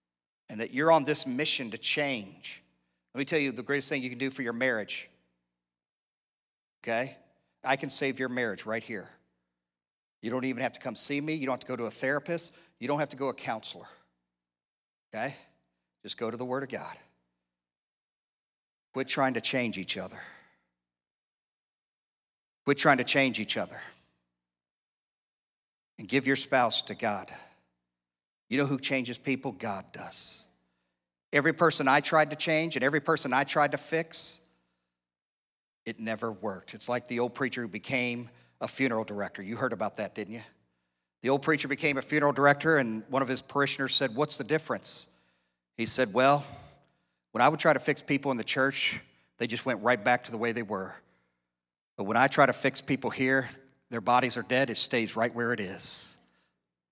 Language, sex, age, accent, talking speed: English, male, 50-69, American, 185 wpm